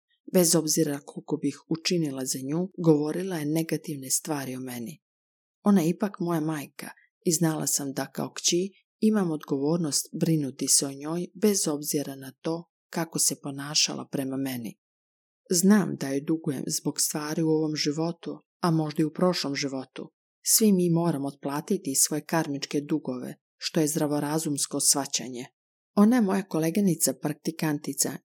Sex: female